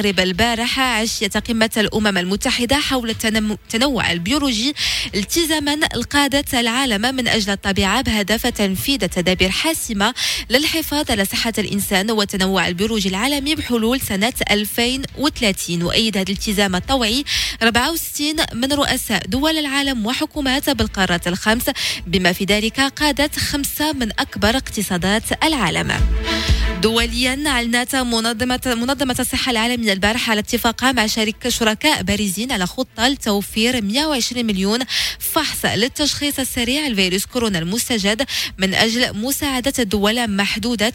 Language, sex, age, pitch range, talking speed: French, female, 20-39, 205-265 Hz, 115 wpm